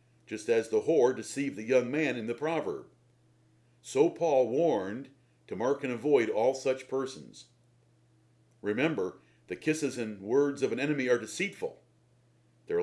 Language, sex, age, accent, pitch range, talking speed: English, male, 50-69, American, 120-160 Hz, 150 wpm